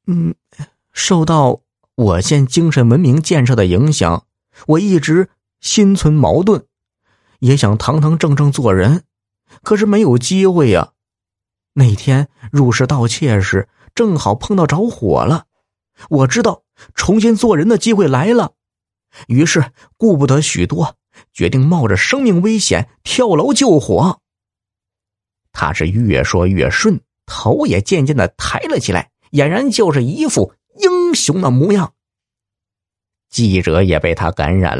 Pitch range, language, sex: 100-165 Hz, Chinese, male